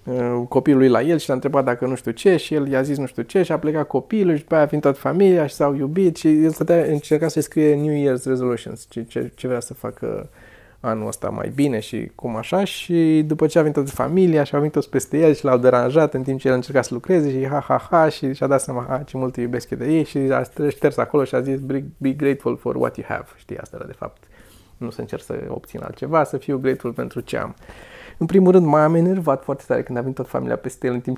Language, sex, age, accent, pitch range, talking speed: Romanian, male, 20-39, native, 125-155 Hz, 260 wpm